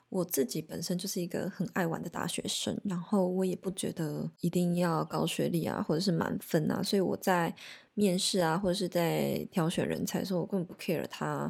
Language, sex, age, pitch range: Chinese, female, 20-39, 165-200 Hz